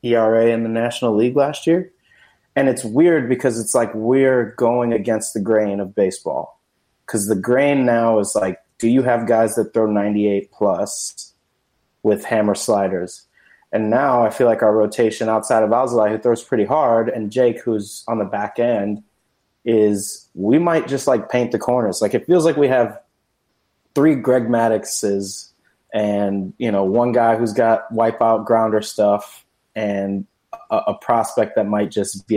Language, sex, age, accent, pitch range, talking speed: English, male, 30-49, American, 105-125 Hz, 175 wpm